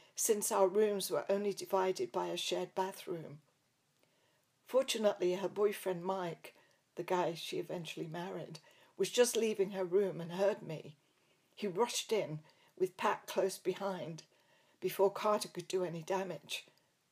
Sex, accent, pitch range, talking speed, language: female, British, 175-215 Hz, 140 wpm, English